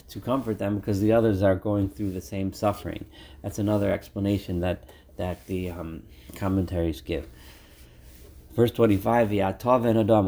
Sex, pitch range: male, 90-110 Hz